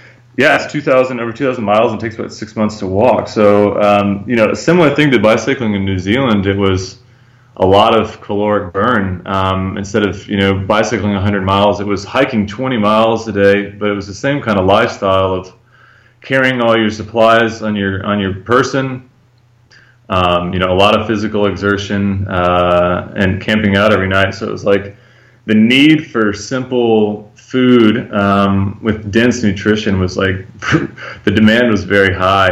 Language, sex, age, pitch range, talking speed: English, male, 20-39, 100-115 Hz, 180 wpm